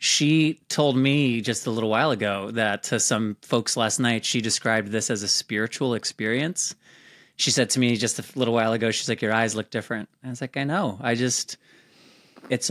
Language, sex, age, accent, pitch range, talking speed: English, male, 30-49, American, 110-135 Hz, 210 wpm